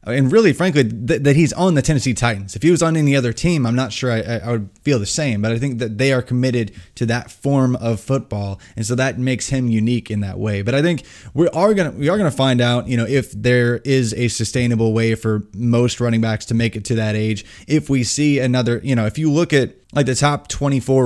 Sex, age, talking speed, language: male, 20-39, 255 wpm, English